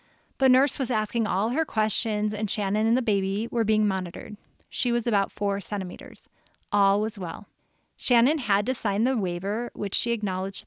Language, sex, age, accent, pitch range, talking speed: English, female, 30-49, American, 200-235 Hz, 180 wpm